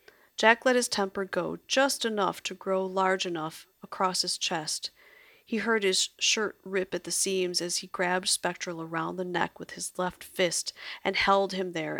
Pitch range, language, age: 175-220 Hz, English, 40-59